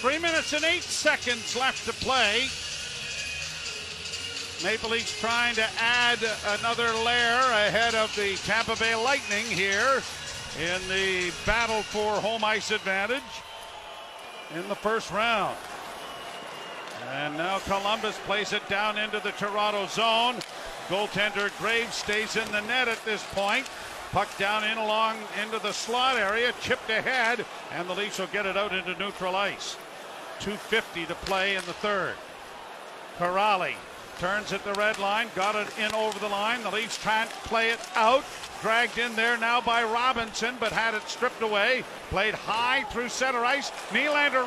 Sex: male